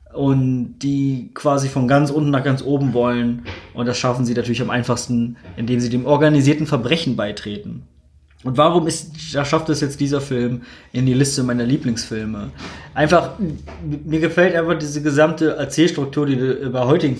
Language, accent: German, German